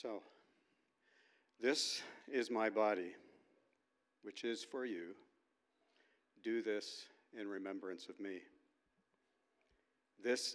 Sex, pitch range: male, 100-125 Hz